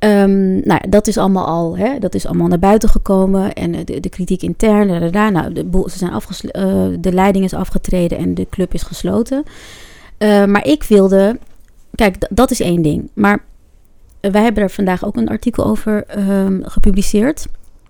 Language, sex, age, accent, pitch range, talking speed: Dutch, female, 30-49, Dutch, 185-220 Hz, 190 wpm